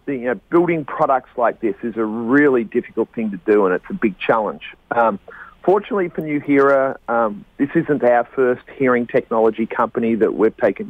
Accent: Australian